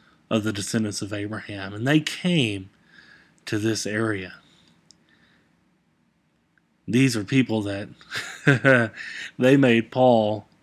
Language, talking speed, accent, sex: English, 100 wpm, American, male